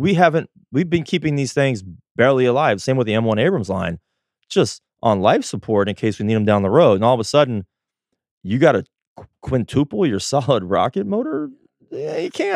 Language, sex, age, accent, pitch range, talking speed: English, male, 30-49, American, 100-130 Hz, 200 wpm